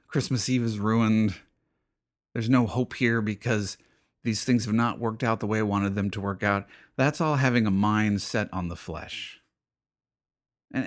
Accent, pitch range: American, 100-135 Hz